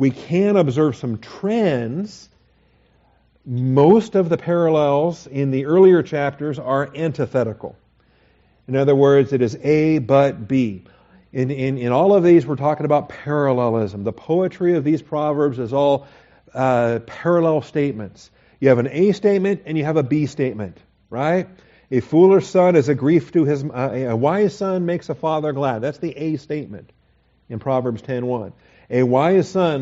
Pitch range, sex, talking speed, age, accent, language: 125-155 Hz, male, 165 wpm, 50-69, American, English